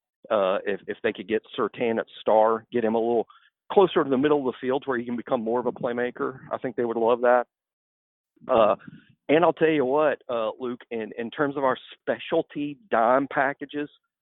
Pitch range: 110-135 Hz